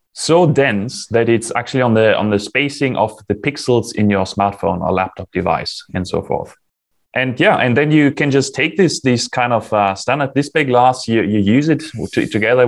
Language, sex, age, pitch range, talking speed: English, male, 20-39, 105-140 Hz, 210 wpm